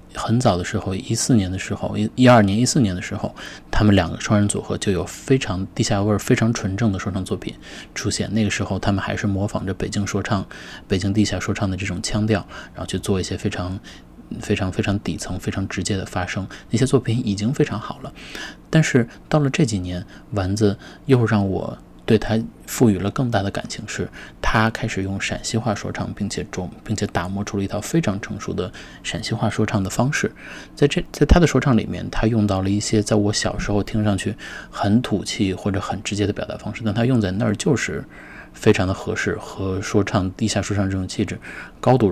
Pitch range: 95-110 Hz